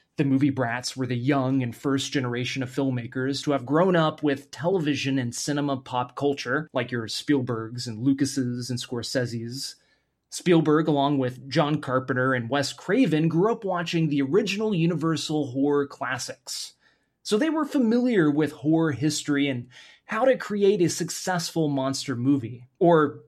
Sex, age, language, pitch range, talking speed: male, 20-39, English, 125-160 Hz, 155 wpm